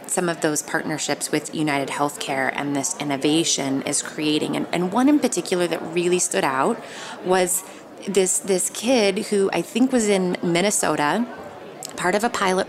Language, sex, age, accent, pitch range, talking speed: English, female, 20-39, American, 160-205 Hz, 165 wpm